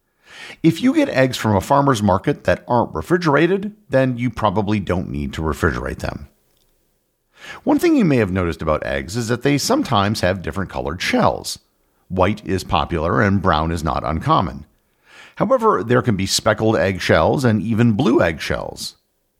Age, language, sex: 50-69, English, male